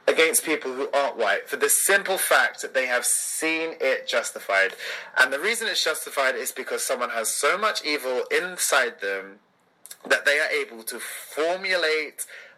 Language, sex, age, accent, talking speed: English, male, 30-49, British, 165 wpm